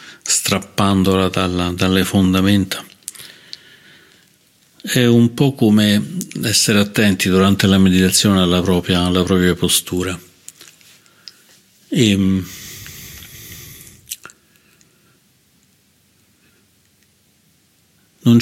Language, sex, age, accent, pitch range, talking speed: Italian, male, 50-69, native, 95-105 Hz, 60 wpm